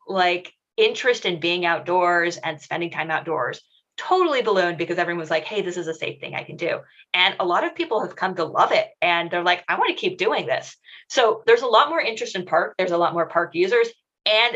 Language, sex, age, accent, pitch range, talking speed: English, female, 30-49, American, 175-250 Hz, 240 wpm